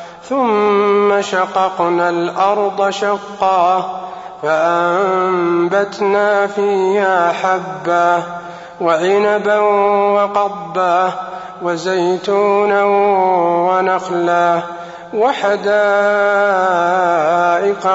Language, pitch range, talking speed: Arabic, 175-200 Hz, 40 wpm